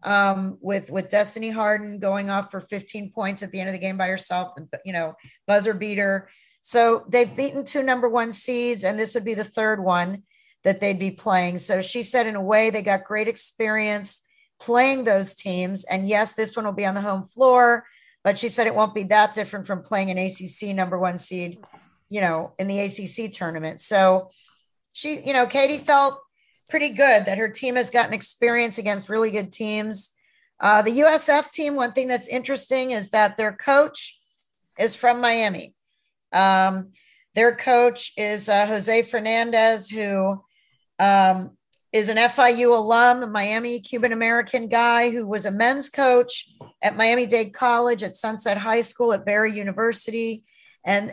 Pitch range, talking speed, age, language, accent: 195-240 Hz, 180 wpm, 40-59, English, American